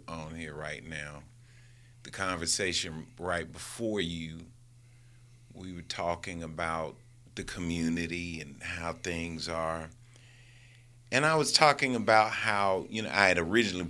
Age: 40-59